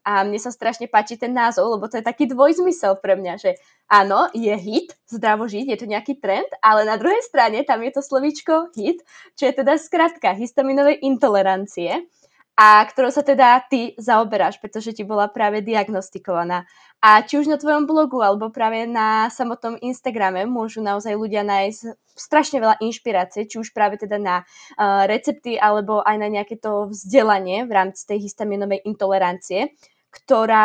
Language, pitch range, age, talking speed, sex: Slovak, 205-265 Hz, 20-39, 170 wpm, female